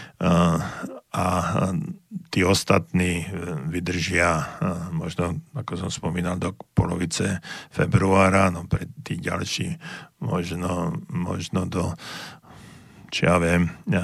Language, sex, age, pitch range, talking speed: Slovak, male, 50-69, 90-120 Hz, 95 wpm